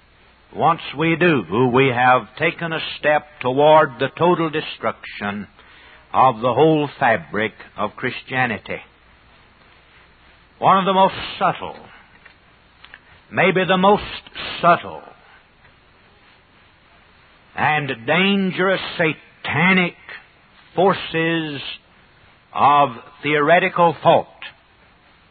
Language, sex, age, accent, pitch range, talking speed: English, male, 60-79, American, 135-180 Hz, 80 wpm